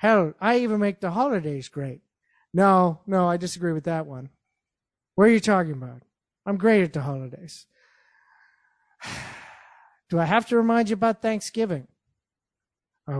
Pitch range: 145-215 Hz